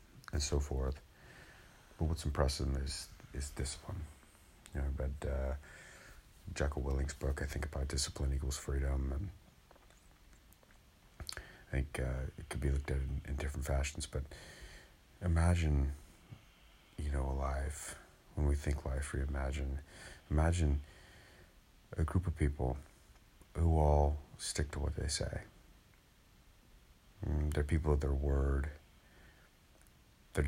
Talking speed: 130 wpm